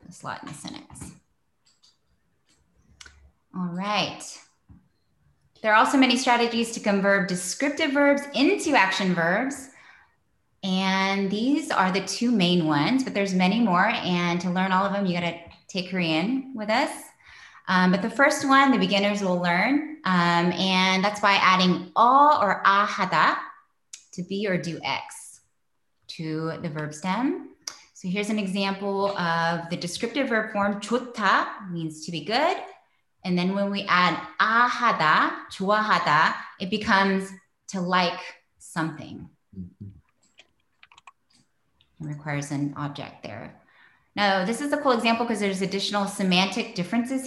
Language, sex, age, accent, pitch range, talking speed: English, female, 20-39, American, 180-240 Hz, 140 wpm